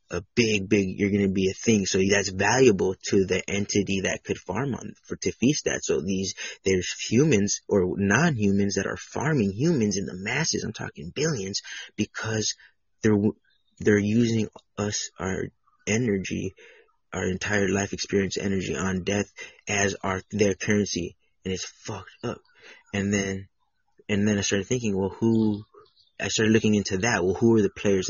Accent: American